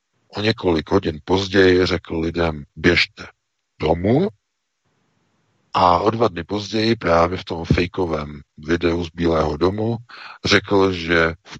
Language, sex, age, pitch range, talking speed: Czech, male, 50-69, 80-95 Hz, 125 wpm